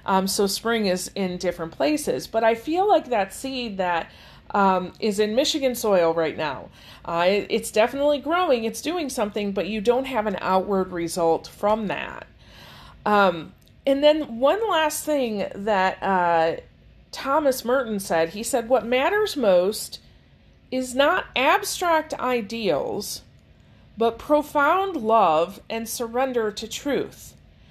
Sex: female